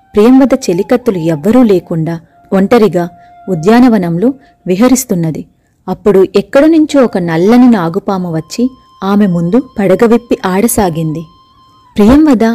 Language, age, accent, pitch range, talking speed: Telugu, 30-49, native, 180-245 Hz, 90 wpm